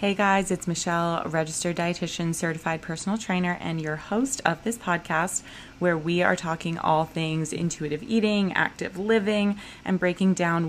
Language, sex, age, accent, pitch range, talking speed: English, female, 20-39, American, 155-185 Hz, 155 wpm